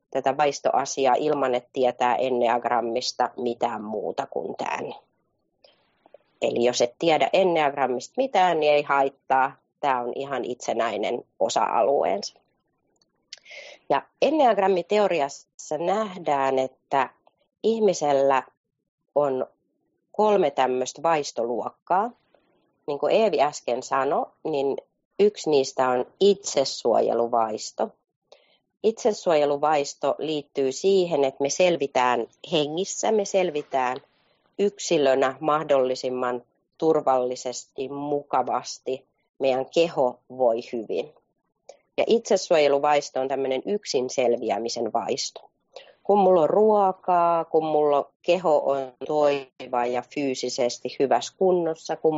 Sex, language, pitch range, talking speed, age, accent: female, Finnish, 125-170 Hz, 90 wpm, 30-49, native